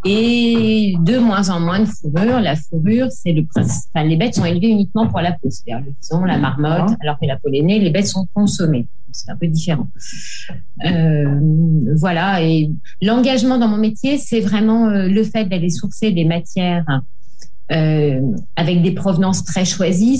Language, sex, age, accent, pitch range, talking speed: French, female, 30-49, French, 160-195 Hz, 180 wpm